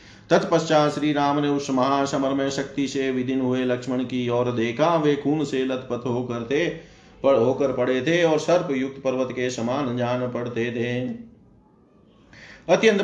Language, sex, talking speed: Hindi, male, 145 wpm